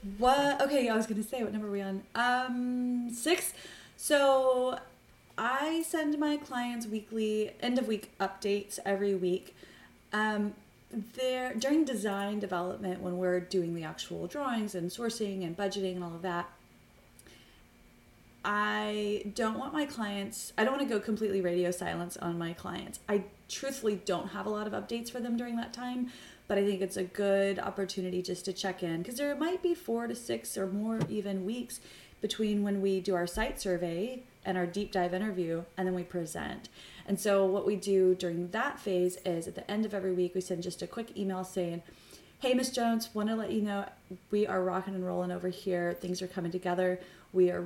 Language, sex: English, female